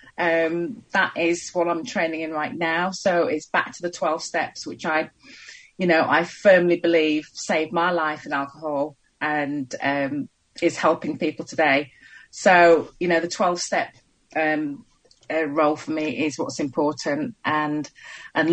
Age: 30-49